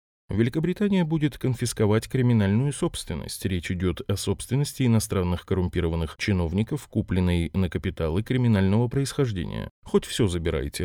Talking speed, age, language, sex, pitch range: 110 wpm, 20-39, Russian, male, 90-125 Hz